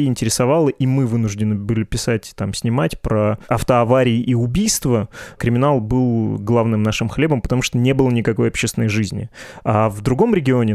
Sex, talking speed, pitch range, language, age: male, 155 wpm, 115-135 Hz, Russian, 20-39